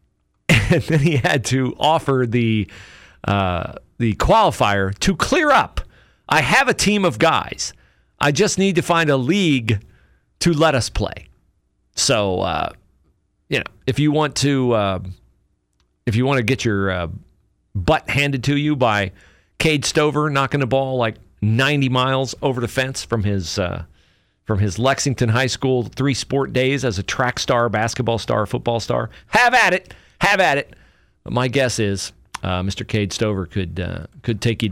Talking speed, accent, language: 175 wpm, American, English